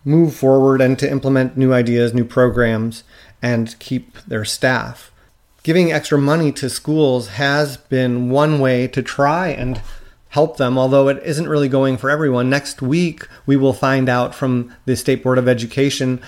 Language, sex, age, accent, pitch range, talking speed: English, male, 30-49, American, 125-140 Hz, 170 wpm